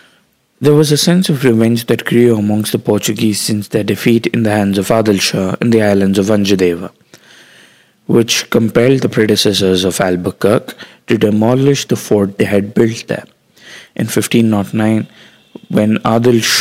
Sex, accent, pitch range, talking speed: male, Indian, 105-120 Hz, 150 wpm